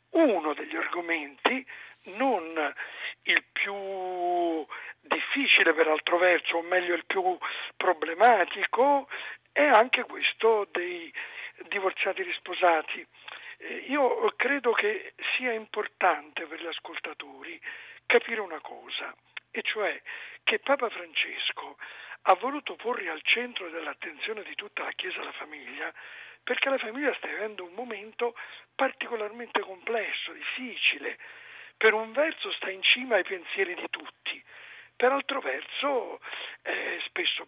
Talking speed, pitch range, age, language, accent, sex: 120 wpm, 195-285 Hz, 50-69, Italian, native, male